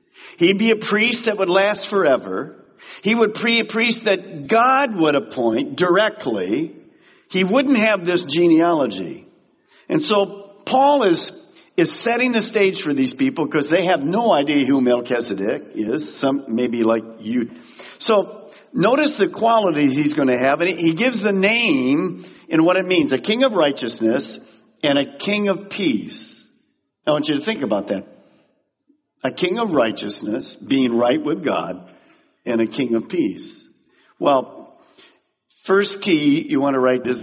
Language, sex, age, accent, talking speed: English, male, 50-69, American, 160 wpm